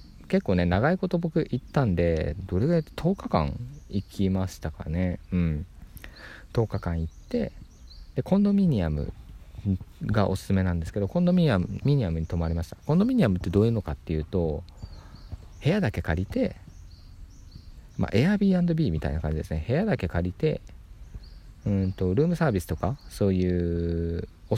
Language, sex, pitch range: Japanese, male, 85-115 Hz